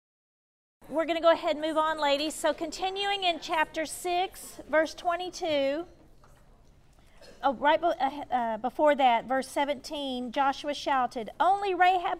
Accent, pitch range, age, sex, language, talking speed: American, 240-305 Hz, 40-59, female, English, 125 wpm